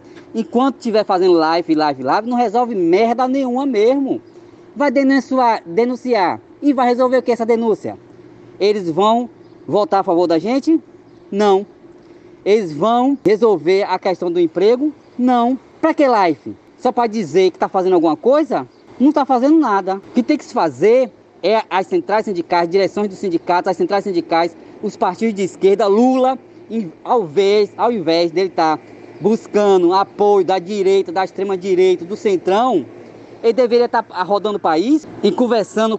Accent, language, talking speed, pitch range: Brazilian, Portuguese, 160 wpm, 195-275 Hz